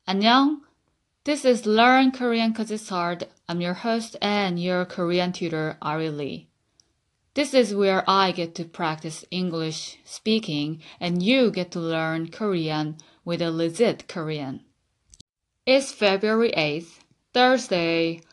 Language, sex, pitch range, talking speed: English, female, 165-210 Hz, 130 wpm